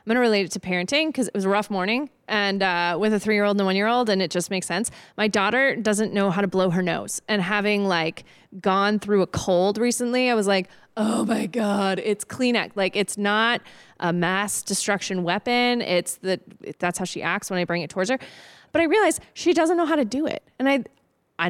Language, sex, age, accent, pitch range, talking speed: English, female, 20-39, American, 180-245 Hz, 230 wpm